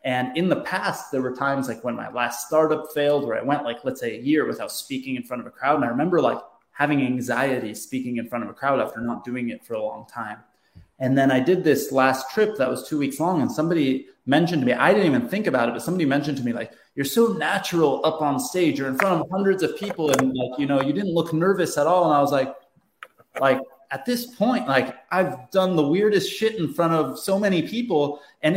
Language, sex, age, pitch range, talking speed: English, male, 20-39, 135-210 Hz, 255 wpm